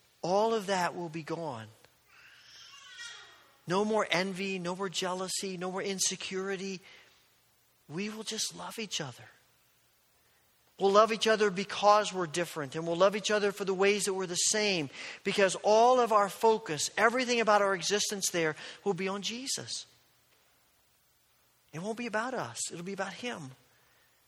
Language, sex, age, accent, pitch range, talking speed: English, male, 50-69, American, 165-205 Hz, 155 wpm